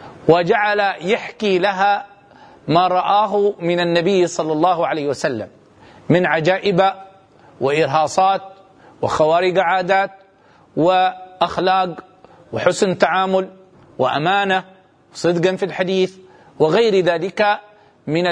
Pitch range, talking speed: 175-210 Hz, 85 wpm